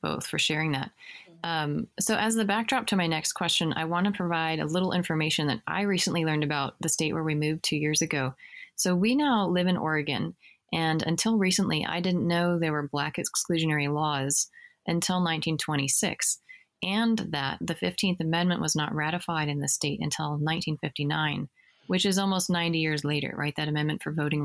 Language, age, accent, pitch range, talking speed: English, 30-49, American, 150-185 Hz, 185 wpm